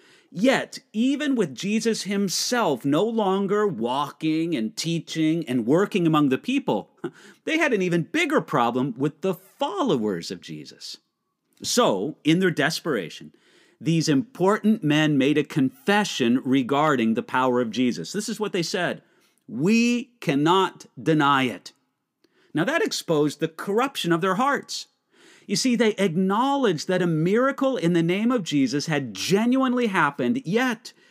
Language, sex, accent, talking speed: English, male, American, 145 wpm